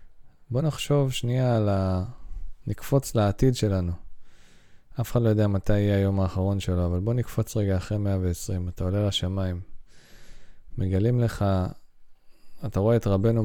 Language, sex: Hebrew, male